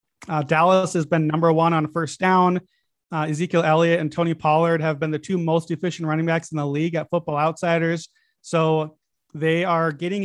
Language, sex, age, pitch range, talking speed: English, male, 30-49, 155-175 Hz, 195 wpm